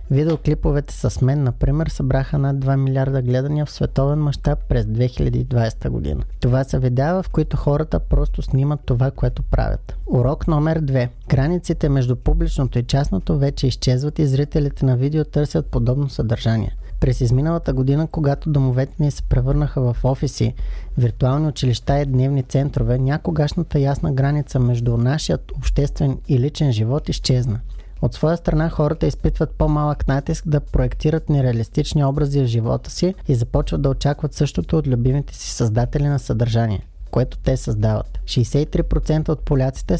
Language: Bulgarian